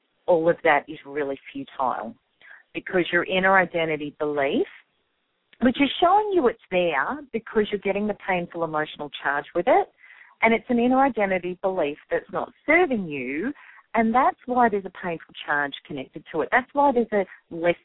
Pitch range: 170-270 Hz